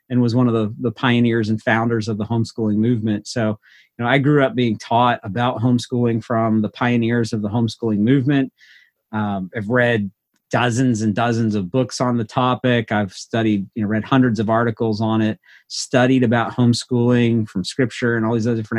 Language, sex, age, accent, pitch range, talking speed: English, male, 40-59, American, 110-125 Hz, 195 wpm